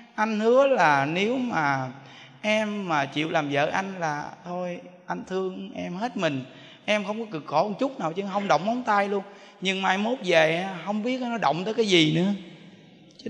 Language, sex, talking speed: Vietnamese, male, 205 wpm